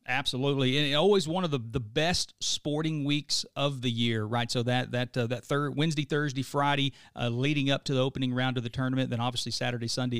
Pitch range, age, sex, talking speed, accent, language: 125-150 Hz, 40-59, male, 220 wpm, American, English